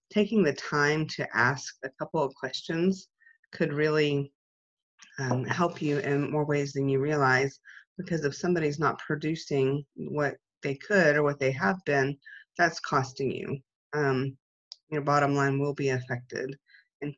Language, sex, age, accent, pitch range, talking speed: English, female, 30-49, American, 135-160 Hz, 155 wpm